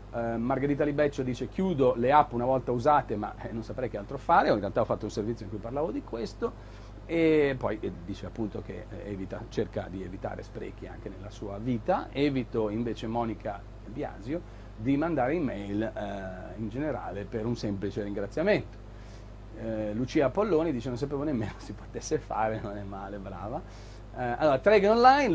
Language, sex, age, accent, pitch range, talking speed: Italian, male, 40-59, native, 105-140 Hz, 175 wpm